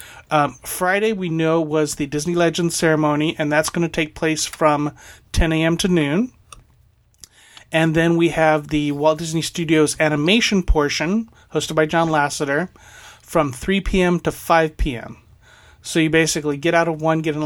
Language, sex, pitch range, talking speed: English, male, 145-165 Hz, 170 wpm